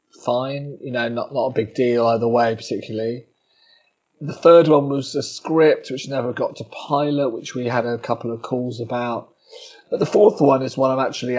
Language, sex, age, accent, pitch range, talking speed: English, male, 30-49, British, 115-135 Hz, 200 wpm